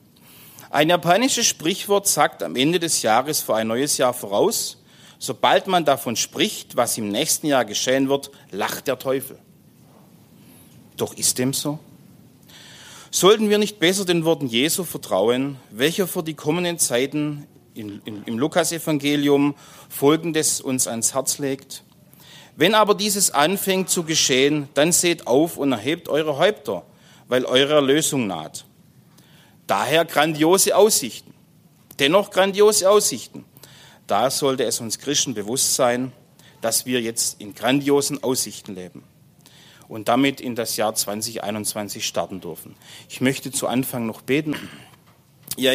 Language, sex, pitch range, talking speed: German, male, 125-155 Hz, 135 wpm